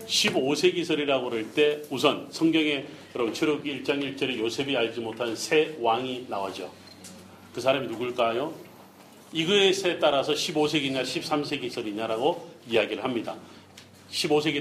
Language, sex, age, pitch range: Korean, male, 40-59, 115-155 Hz